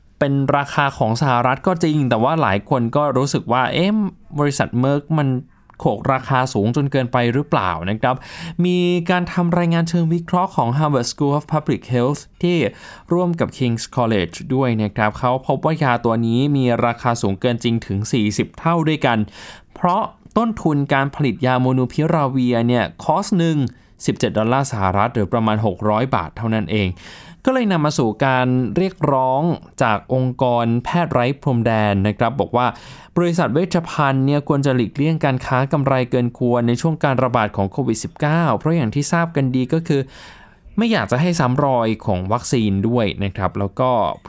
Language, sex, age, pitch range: Thai, male, 20-39, 115-155 Hz